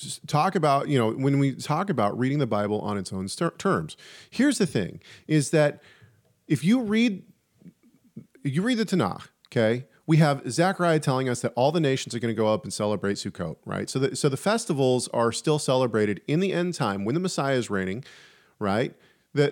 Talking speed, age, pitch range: 205 wpm, 40-59, 125-180 Hz